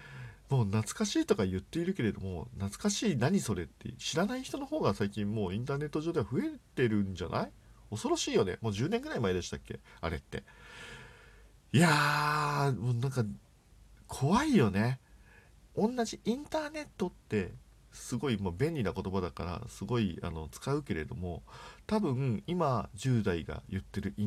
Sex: male